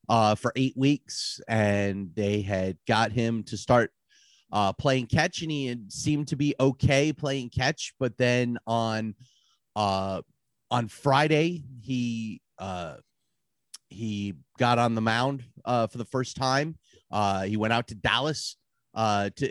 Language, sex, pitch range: English, male, 110-130 Hz